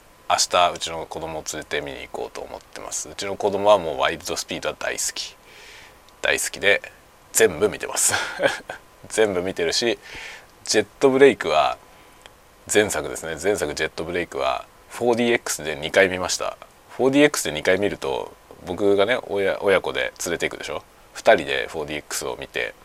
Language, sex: Japanese, male